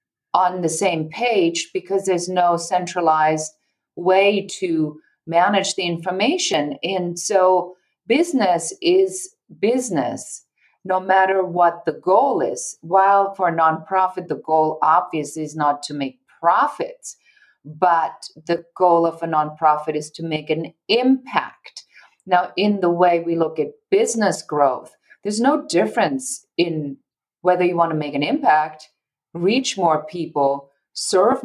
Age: 40-59